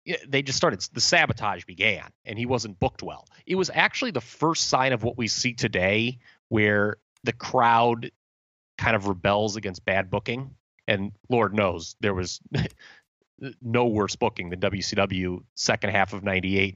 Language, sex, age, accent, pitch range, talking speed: English, male, 30-49, American, 100-120 Hz, 160 wpm